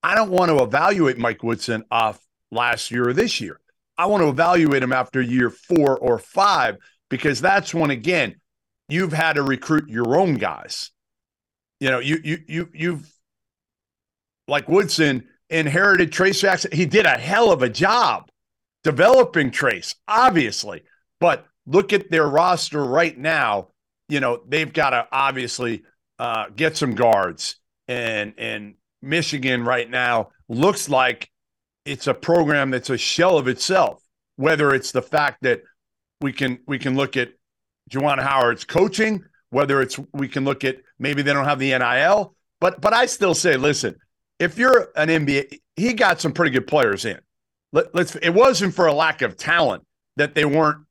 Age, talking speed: 50-69, 165 wpm